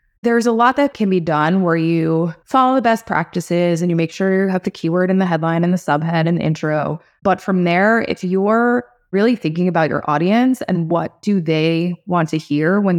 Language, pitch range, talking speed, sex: English, 165-200 Hz, 220 wpm, female